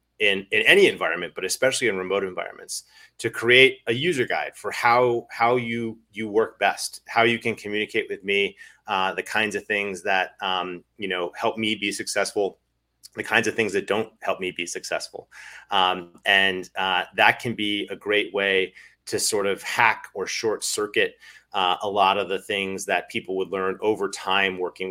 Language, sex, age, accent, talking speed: English, male, 30-49, American, 190 wpm